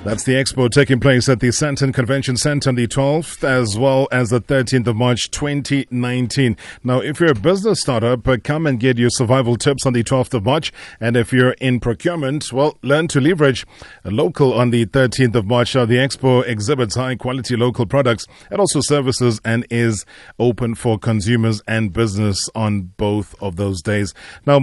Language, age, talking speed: English, 30-49, 185 wpm